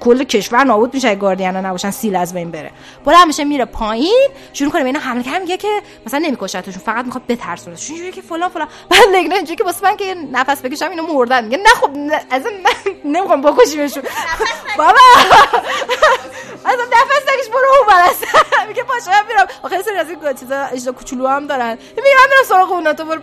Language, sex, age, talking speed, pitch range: Persian, female, 20-39, 155 wpm, 250-390 Hz